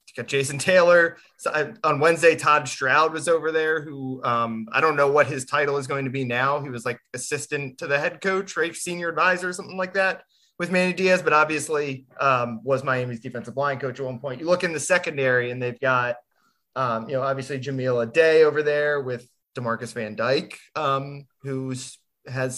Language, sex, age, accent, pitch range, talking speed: English, male, 20-39, American, 130-165 Hz, 205 wpm